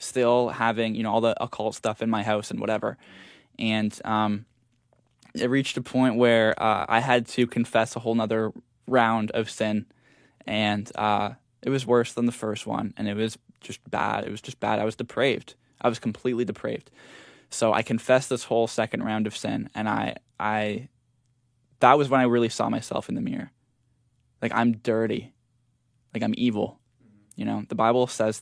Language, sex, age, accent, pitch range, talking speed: English, male, 10-29, American, 110-125 Hz, 190 wpm